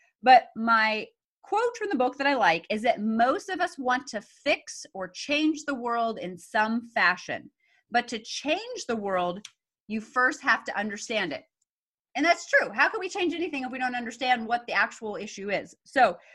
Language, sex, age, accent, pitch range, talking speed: English, female, 30-49, American, 215-285 Hz, 195 wpm